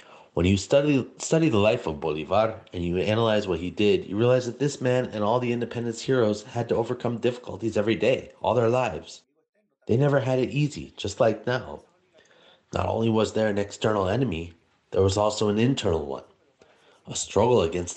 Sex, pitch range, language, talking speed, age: male, 95-125 Hz, English, 190 wpm, 30-49